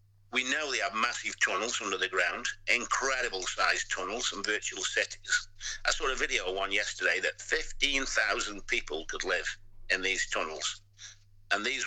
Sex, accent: male, British